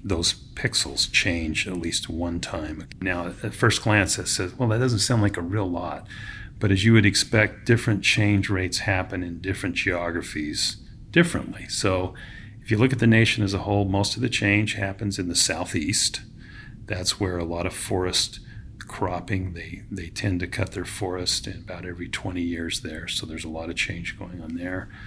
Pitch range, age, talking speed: 90-110 Hz, 40-59, 195 wpm